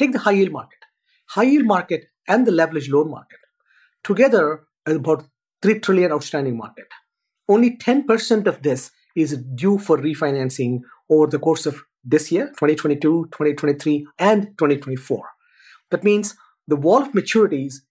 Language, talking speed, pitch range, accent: English, 145 wpm, 145-210 Hz, Indian